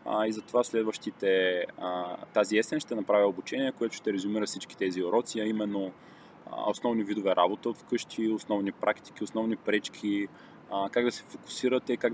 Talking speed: 140 wpm